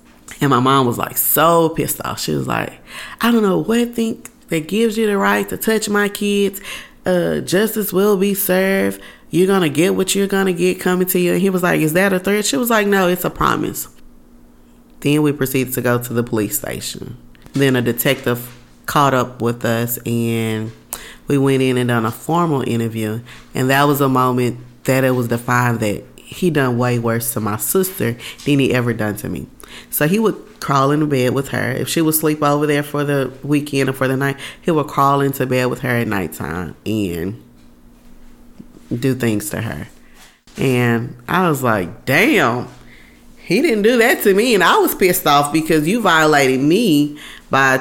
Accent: American